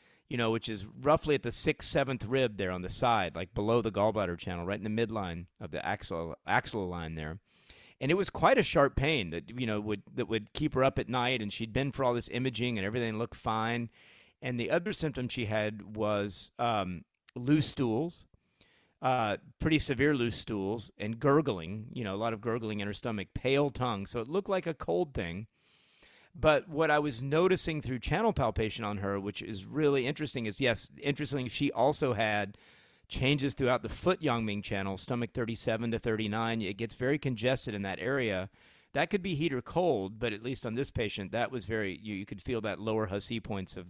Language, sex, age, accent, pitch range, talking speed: English, male, 30-49, American, 105-135 Hz, 210 wpm